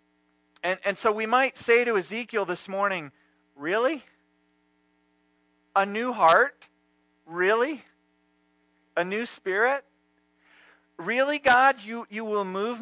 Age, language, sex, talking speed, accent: 40-59, English, male, 110 wpm, American